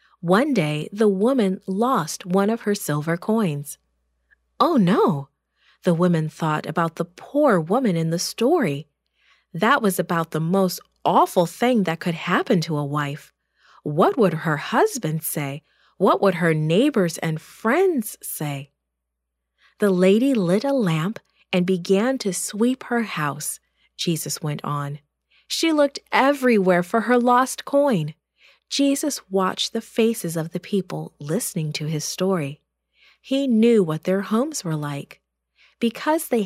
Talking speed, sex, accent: 145 wpm, female, American